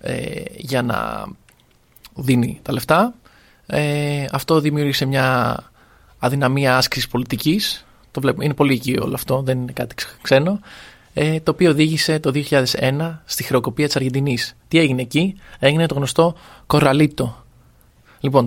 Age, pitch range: 20-39, 130-155 Hz